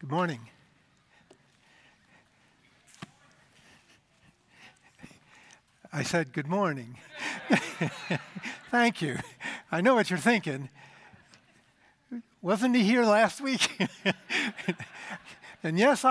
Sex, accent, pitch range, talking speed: male, American, 145-200 Hz, 75 wpm